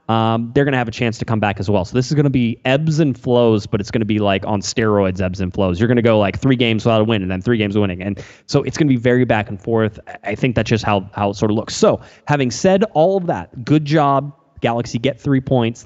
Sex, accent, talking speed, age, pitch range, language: male, American, 300 wpm, 20-39, 105-130 Hz, English